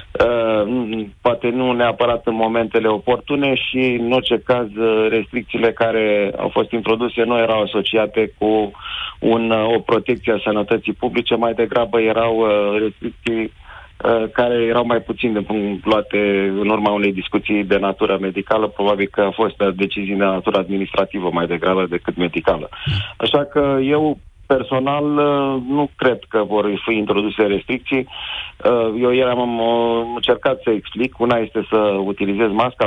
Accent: native